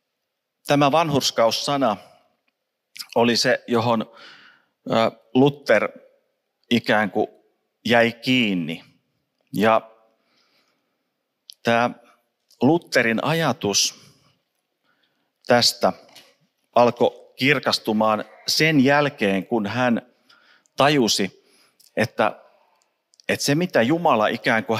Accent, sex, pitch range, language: native, male, 105-140 Hz, Finnish